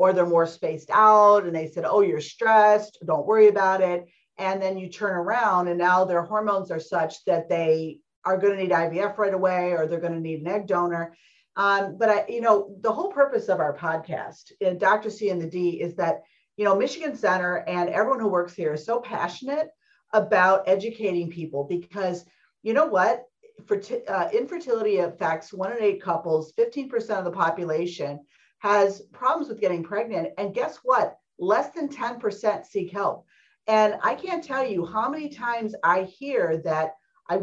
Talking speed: 190 wpm